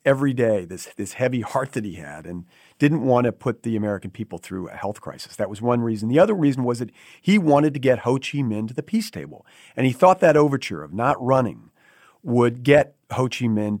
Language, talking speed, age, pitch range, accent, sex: English, 235 wpm, 50-69, 115-140 Hz, American, male